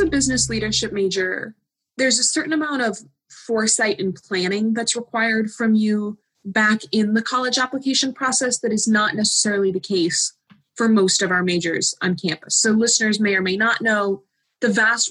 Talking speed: 175 wpm